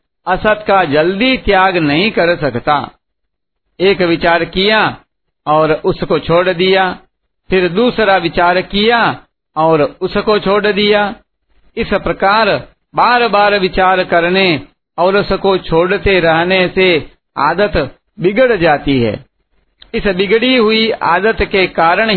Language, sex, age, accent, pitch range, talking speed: Hindi, male, 60-79, native, 170-205 Hz, 115 wpm